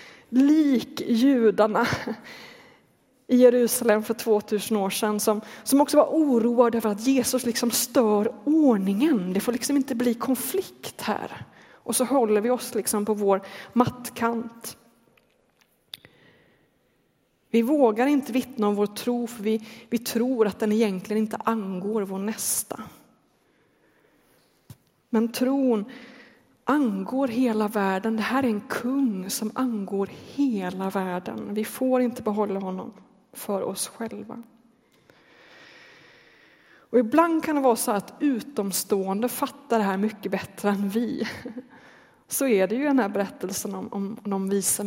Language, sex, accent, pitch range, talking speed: Swedish, female, native, 210-250 Hz, 135 wpm